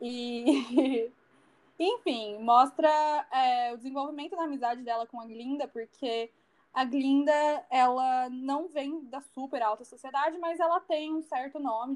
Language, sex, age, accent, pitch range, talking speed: Portuguese, female, 20-39, Brazilian, 225-280 Hz, 140 wpm